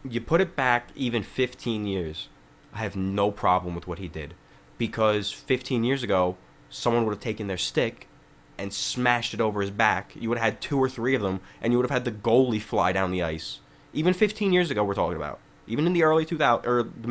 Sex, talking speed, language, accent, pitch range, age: male, 225 wpm, English, American, 95-130 Hz, 20-39